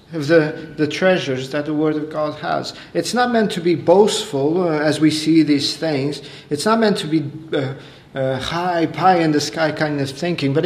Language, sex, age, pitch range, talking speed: English, male, 40-59, 145-175 Hz, 190 wpm